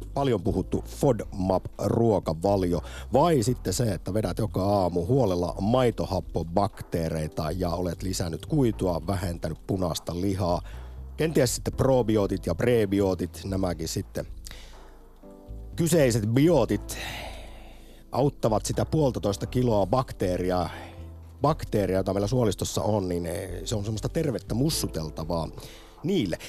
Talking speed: 100 wpm